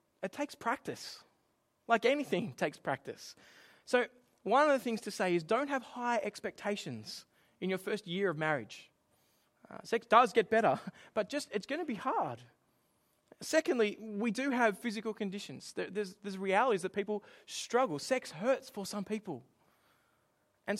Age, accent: 20-39, Australian